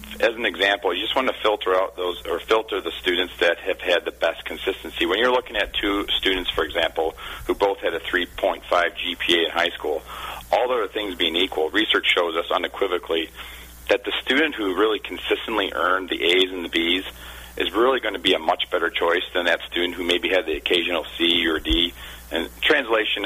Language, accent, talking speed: English, American, 205 wpm